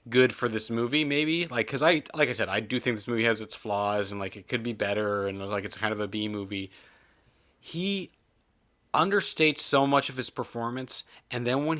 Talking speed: 220 wpm